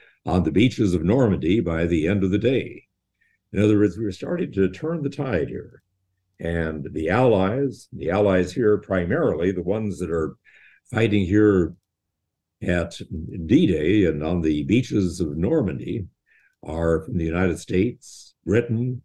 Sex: male